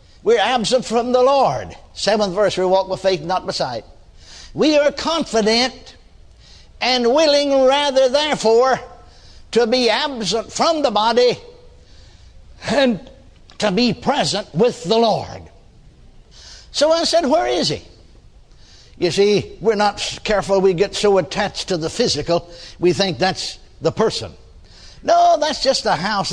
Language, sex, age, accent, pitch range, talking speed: English, male, 60-79, American, 185-265 Hz, 140 wpm